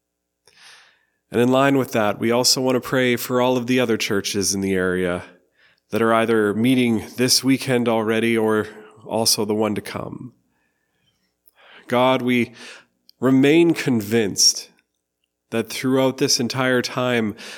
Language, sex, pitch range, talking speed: English, male, 100-125 Hz, 140 wpm